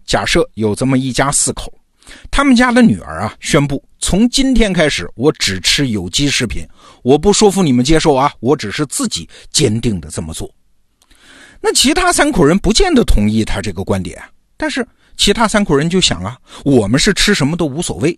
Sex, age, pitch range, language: male, 50-69, 105-170 Hz, Chinese